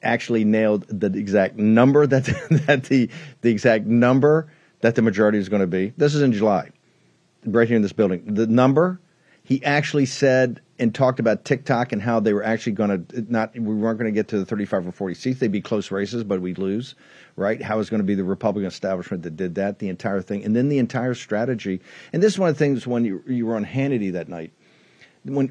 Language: English